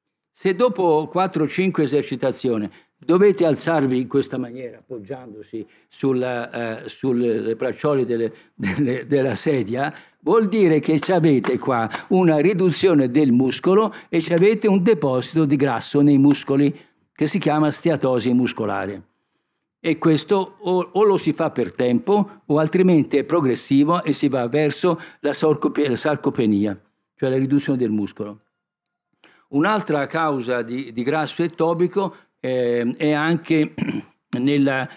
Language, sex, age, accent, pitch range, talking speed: Italian, male, 50-69, native, 125-165 Hz, 130 wpm